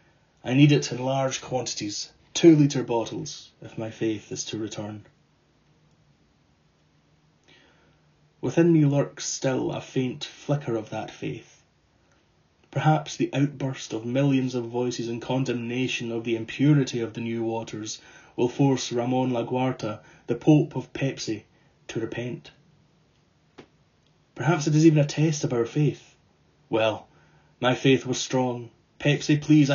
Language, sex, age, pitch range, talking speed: English, male, 30-49, 115-145 Hz, 135 wpm